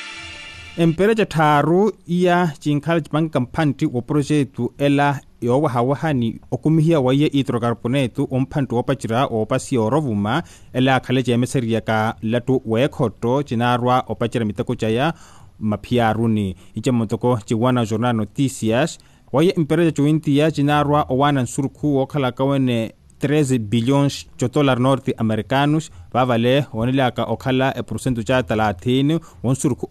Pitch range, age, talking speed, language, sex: 115-140 Hz, 30-49, 125 wpm, English, male